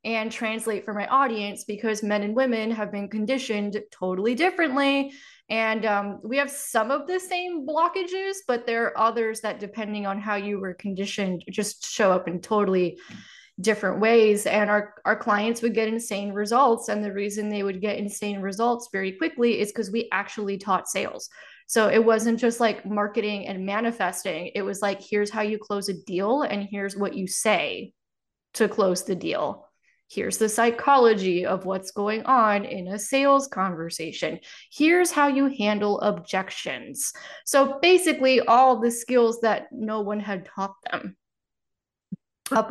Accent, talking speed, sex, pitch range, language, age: American, 165 wpm, female, 205-240 Hz, English, 20-39